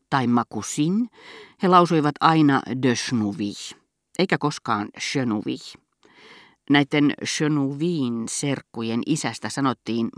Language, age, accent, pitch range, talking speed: Finnish, 40-59, native, 125-155 Hz, 90 wpm